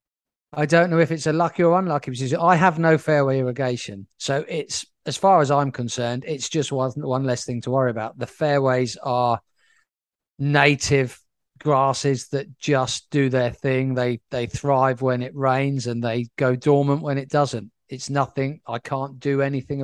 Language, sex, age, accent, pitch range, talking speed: English, male, 40-59, British, 125-145 Hz, 180 wpm